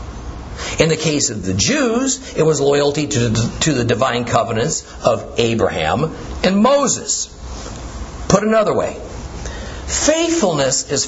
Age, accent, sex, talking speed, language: 50-69, American, male, 120 wpm, English